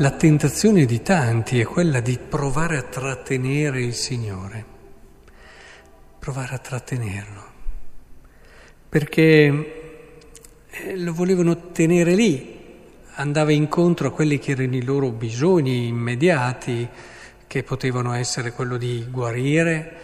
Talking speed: 110 wpm